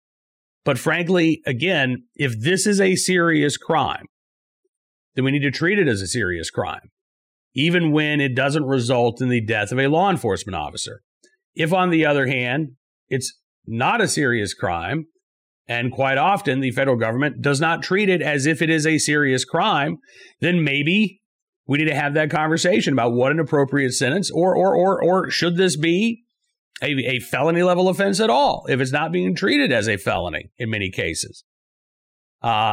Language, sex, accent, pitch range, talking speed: English, male, American, 130-180 Hz, 180 wpm